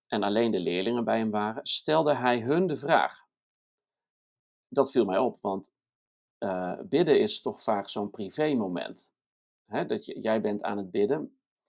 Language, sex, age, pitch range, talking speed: Dutch, male, 50-69, 110-135 Hz, 155 wpm